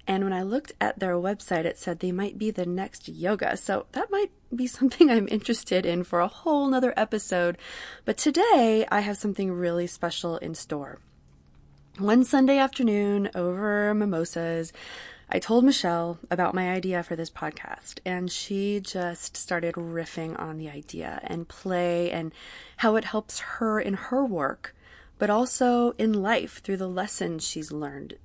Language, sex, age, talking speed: English, female, 20-39, 165 wpm